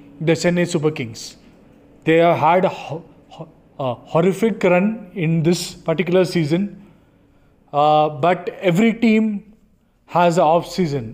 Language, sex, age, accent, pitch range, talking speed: English, male, 30-49, Indian, 155-185 Hz, 130 wpm